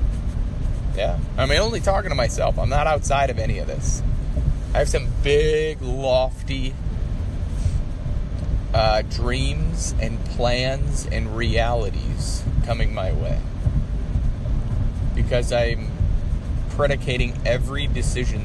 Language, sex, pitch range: English, male, 90-120 Hz